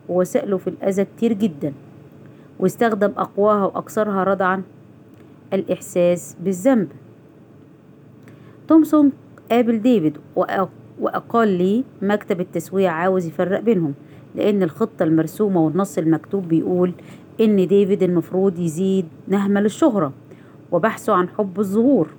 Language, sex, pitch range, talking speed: Arabic, female, 170-225 Hz, 100 wpm